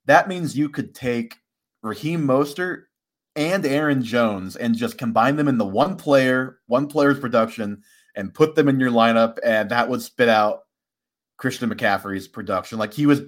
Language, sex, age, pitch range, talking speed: English, male, 30-49, 105-135 Hz, 170 wpm